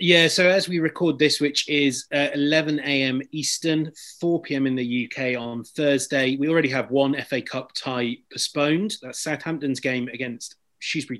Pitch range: 120-145 Hz